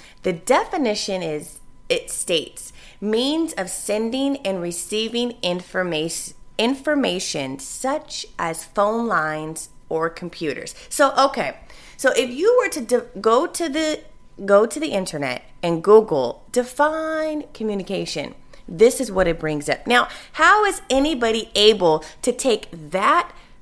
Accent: American